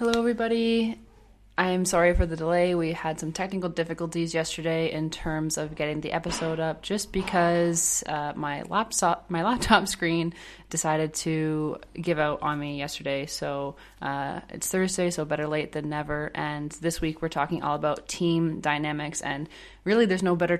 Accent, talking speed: American, 170 wpm